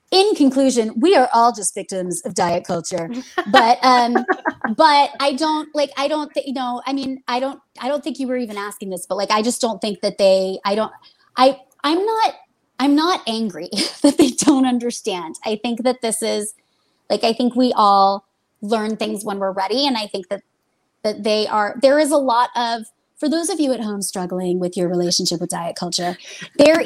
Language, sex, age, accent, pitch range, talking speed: English, female, 30-49, American, 205-265 Hz, 210 wpm